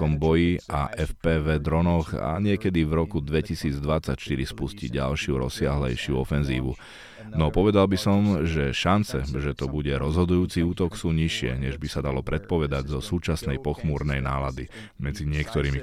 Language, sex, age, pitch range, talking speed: Slovak, male, 30-49, 75-90 Hz, 135 wpm